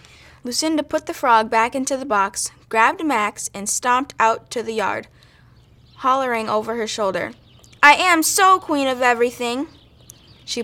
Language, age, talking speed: English, 10-29, 150 wpm